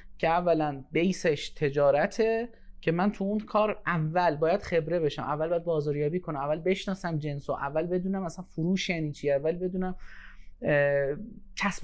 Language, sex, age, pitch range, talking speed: Persian, male, 30-49, 140-185 Hz, 145 wpm